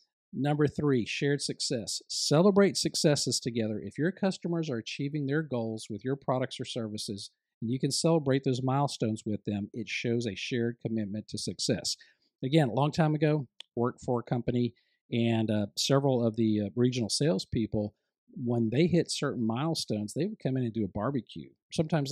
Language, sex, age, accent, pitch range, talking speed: English, male, 50-69, American, 115-145 Hz, 175 wpm